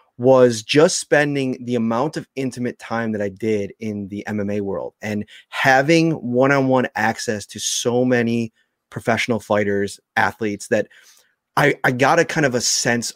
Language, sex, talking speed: English, male, 155 wpm